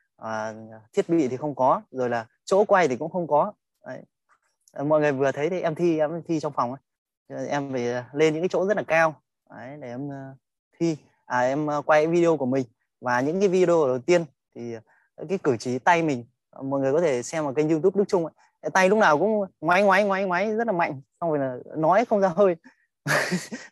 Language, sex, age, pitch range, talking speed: Vietnamese, male, 20-39, 125-170 Hz, 230 wpm